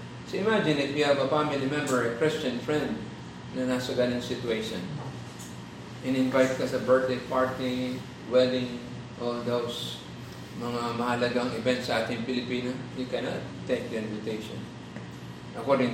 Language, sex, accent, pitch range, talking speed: Filipino, male, native, 120-165 Hz, 135 wpm